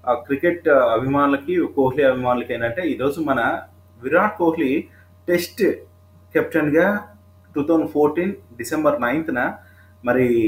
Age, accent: 30-49, native